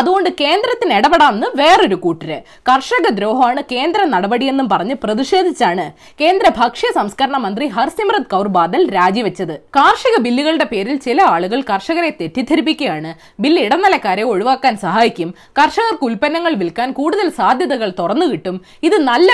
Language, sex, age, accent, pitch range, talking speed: Malayalam, female, 20-39, native, 230-360 Hz, 110 wpm